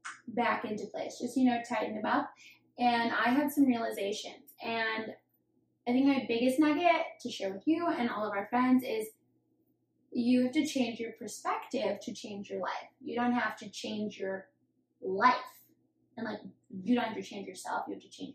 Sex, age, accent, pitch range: female, 10-29, American, 200-255 Hz